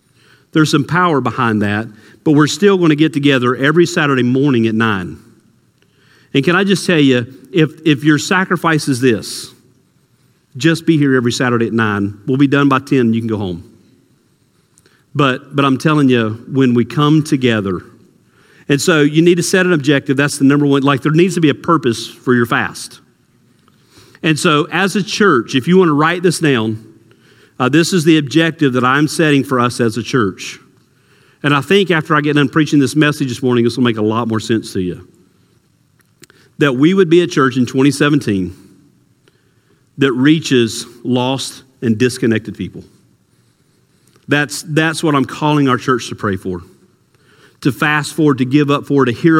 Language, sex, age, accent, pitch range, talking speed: English, male, 50-69, American, 120-155 Hz, 185 wpm